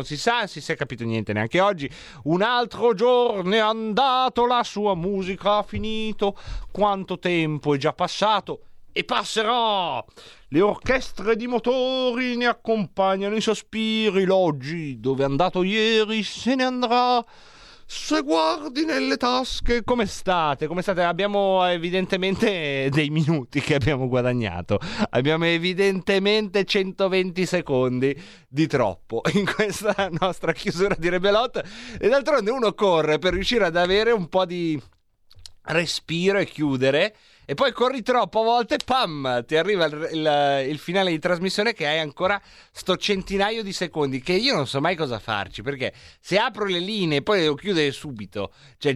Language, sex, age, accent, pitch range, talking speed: Italian, male, 30-49, native, 140-210 Hz, 150 wpm